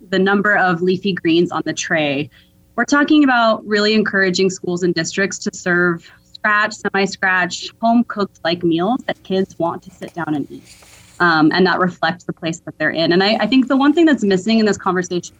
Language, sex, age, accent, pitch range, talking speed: English, female, 20-39, American, 175-215 Hz, 205 wpm